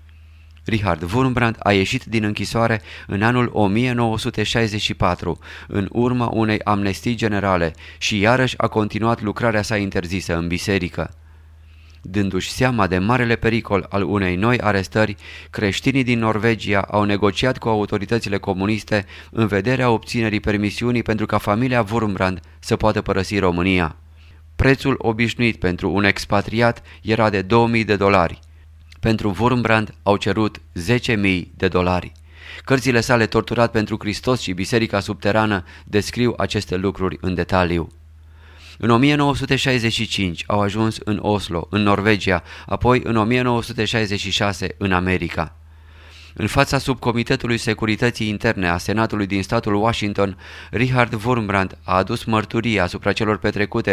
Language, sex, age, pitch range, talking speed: Romanian, male, 30-49, 90-115 Hz, 125 wpm